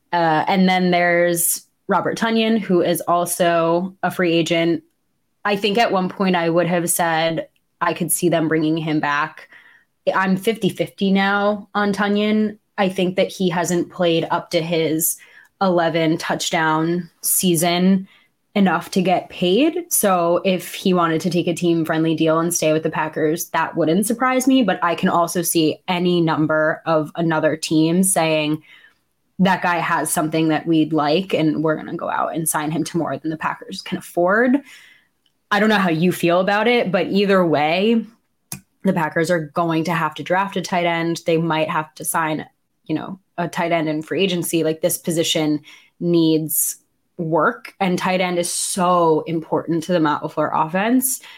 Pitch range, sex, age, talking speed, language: 160-190 Hz, female, 10-29, 175 wpm, English